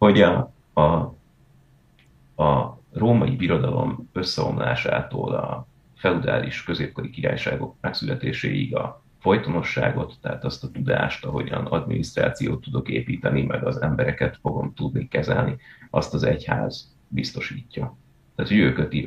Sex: male